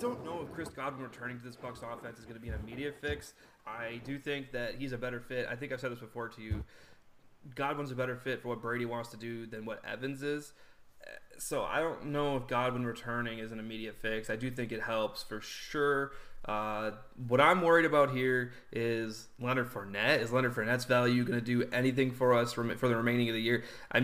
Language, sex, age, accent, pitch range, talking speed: English, male, 30-49, American, 115-135 Hz, 230 wpm